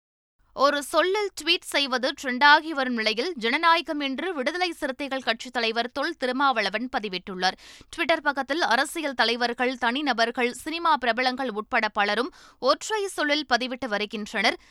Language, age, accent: Tamil, 20-39, native